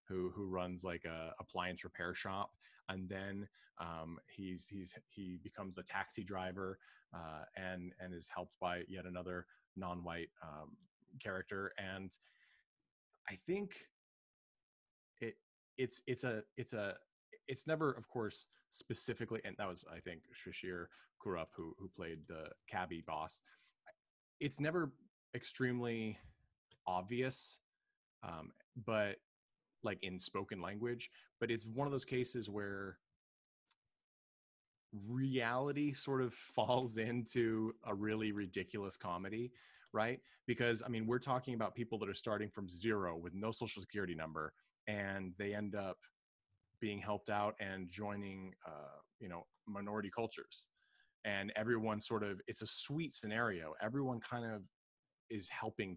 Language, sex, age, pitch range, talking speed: English, male, 20-39, 95-120 Hz, 135 wpm